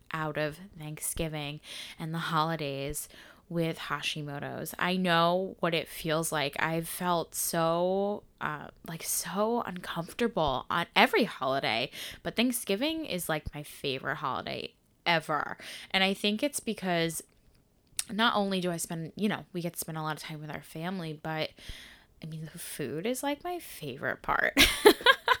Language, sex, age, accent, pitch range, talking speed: English, female, 10-29, American, 160-200 Hz, 155 wpm